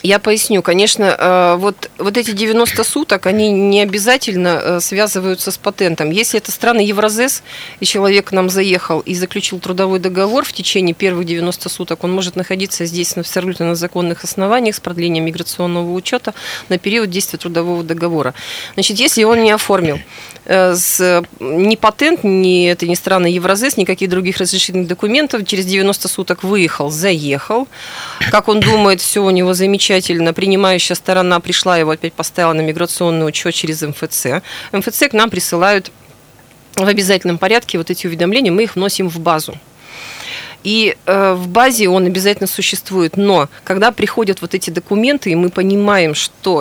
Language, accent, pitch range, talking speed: Russian, native, 175-200 Hz, 155 wpm